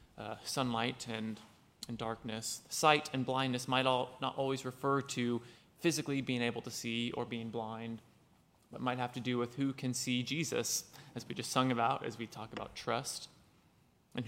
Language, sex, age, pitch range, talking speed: English, male, 20-39, 115-140 Hz, 180 wpm